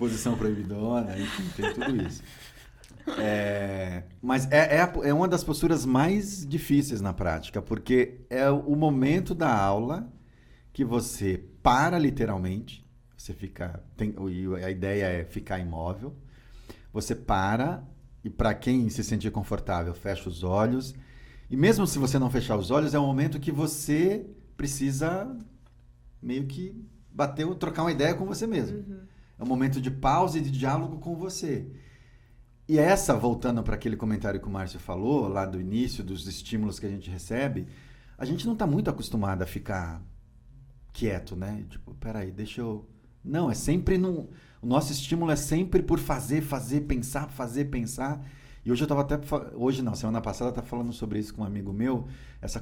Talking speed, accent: 170 wpm, Brazilian